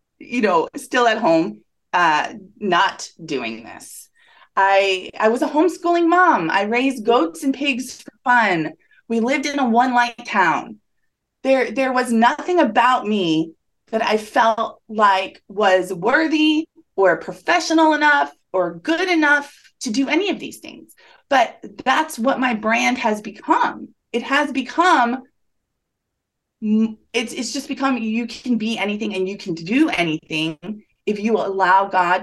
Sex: female